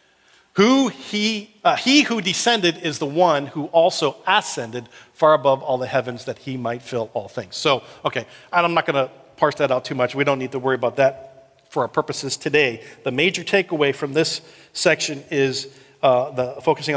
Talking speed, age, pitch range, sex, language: 200 wpm, 40-59, 125-155 Hz, male, English